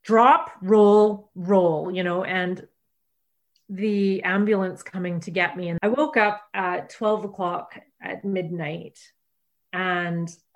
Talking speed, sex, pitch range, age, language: 125 wpm, female, 170-205 Hz, 30-49, English